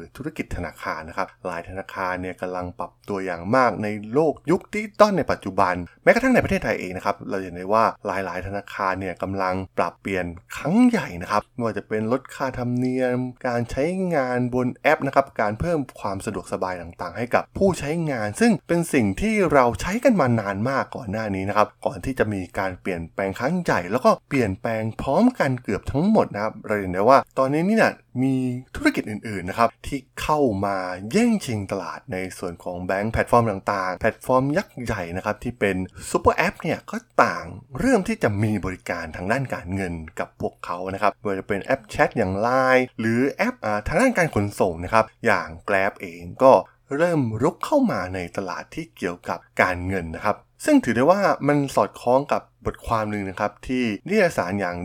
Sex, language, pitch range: male, Thai, 95-140 Hz